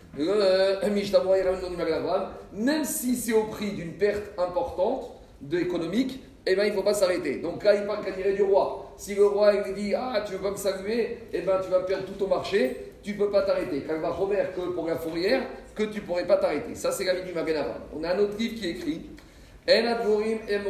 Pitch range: 185-225 Hz